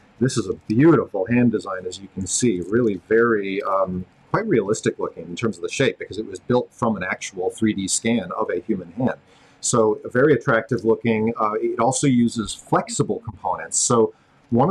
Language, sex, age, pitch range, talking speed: English, male, 40-59, 95-120 Hz, 190 wpm